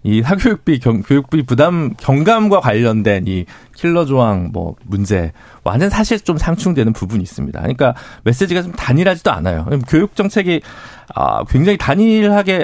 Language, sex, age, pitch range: Korean, male, 40-59, 120-180 Hz